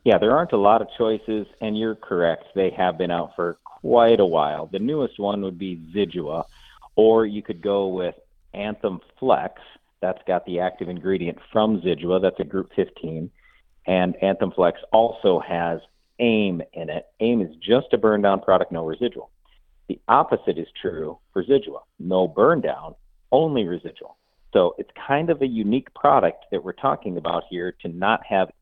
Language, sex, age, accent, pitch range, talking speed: English, male, 50-69, American, 95-115 Hz, 180 wpm